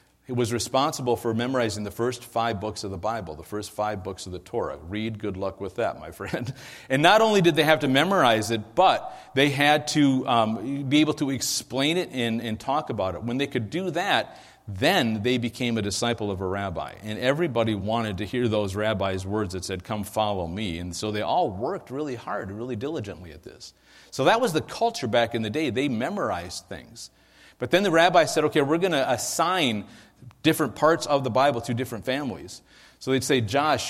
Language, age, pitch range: English, 40-59, 110-140 Hz